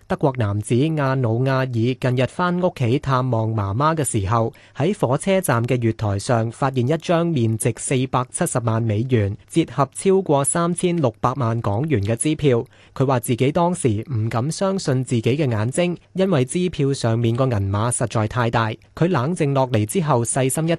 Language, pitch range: Chinese, 115-155 Hz